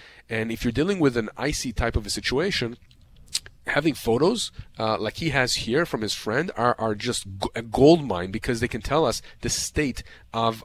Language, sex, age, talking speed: English, male, 40-59, 195 wpm